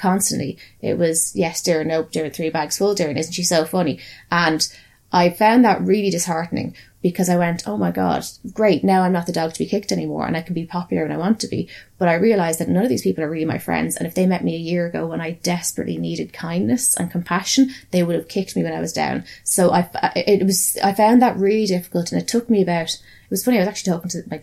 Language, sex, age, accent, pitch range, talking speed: English, female, 20-39, Irish, 170-200 Hz, 265 wpm